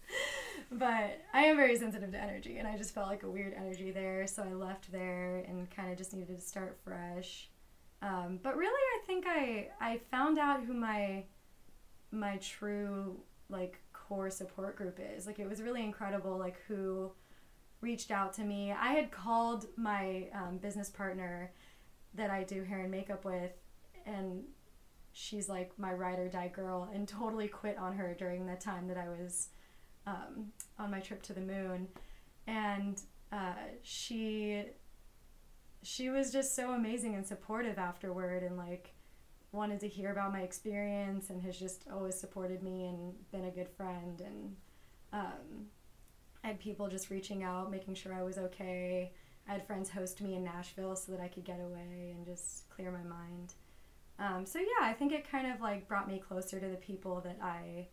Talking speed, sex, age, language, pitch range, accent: 180 wpm, female, 20-39, English, 185-210 Hz, American